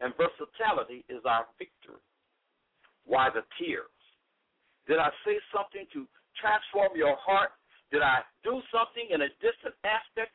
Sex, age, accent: male, 60-79, American